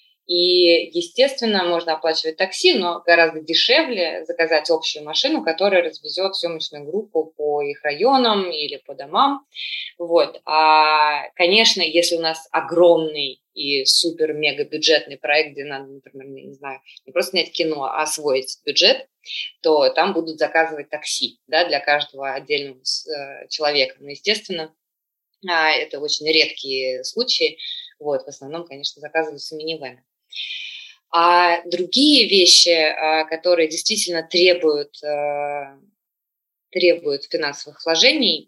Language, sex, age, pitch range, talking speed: Russian, female, 20-39, 150-180 Hz, 115 wpm